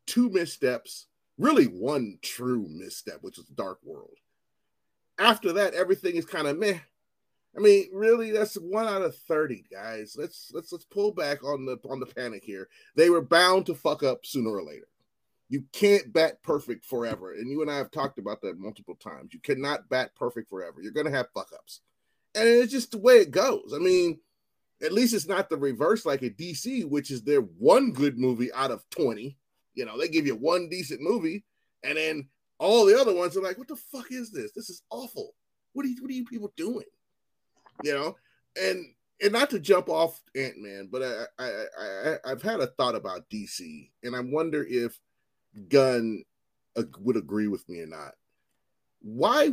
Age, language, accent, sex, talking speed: 30-49, English, American, male, 195 wpm